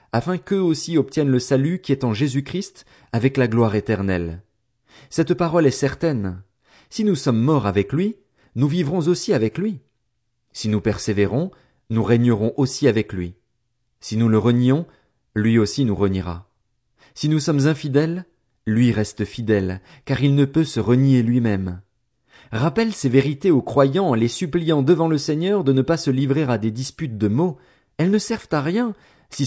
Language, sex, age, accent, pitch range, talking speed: French, male, 40-59, French, 115-160 Hz, 175 wpm